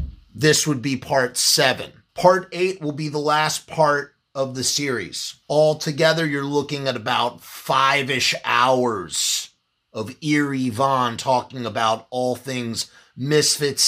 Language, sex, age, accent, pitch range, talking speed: English, male, 30-49, American, 125-160 Hz, 130 wpm